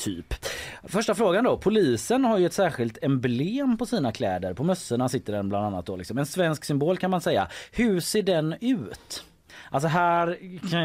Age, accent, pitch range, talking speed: 30-49, native, 105-160 Hz, 190 wpm